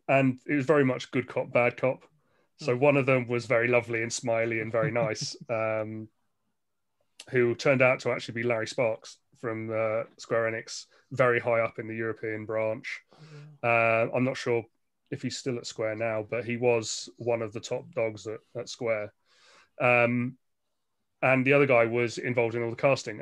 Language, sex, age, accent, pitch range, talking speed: English, male, 30-49, British, 115-145 Hz, 190 wpm